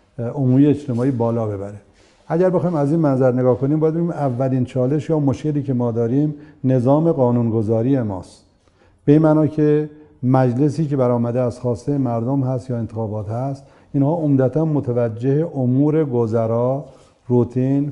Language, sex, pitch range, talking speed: Persian, male, 120-150 Hz, 140 wpm